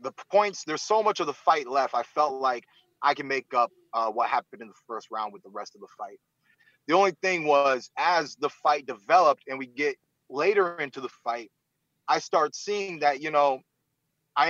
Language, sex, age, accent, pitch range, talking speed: English, male, 30-49, American, 135-175 Hz, 210 wpm